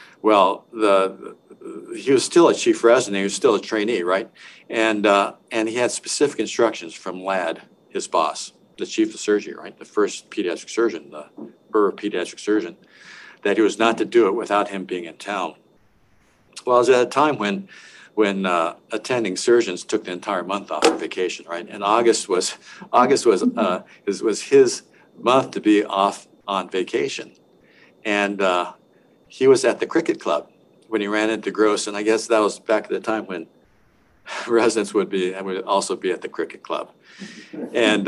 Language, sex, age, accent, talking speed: English, male, 60-79, American, 190 wpm